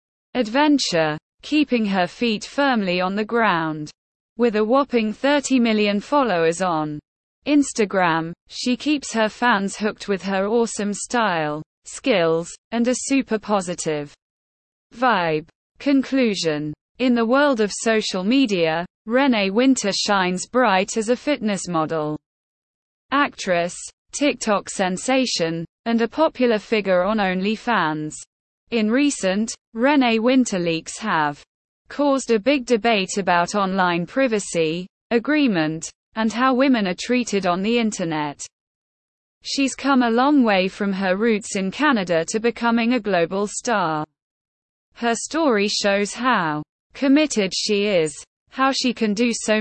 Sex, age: female, 20-39